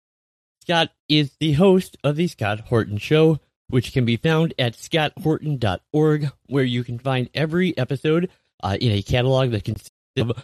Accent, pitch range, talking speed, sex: American, 120-155 Hz, 160 wpm, male